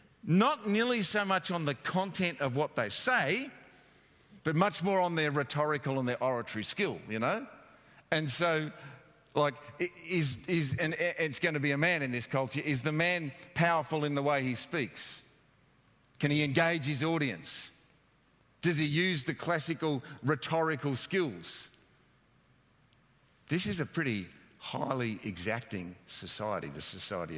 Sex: male